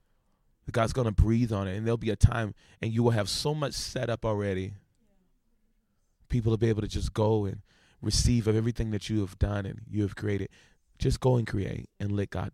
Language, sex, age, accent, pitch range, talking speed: English, male, 20-39, American, 95-110 Hz, 215 wpm